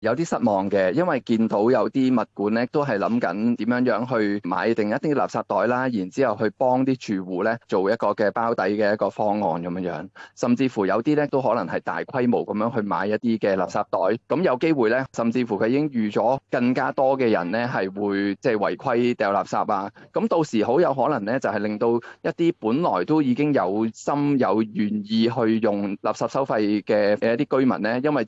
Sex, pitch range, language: male, 105-125 Hz, Chinese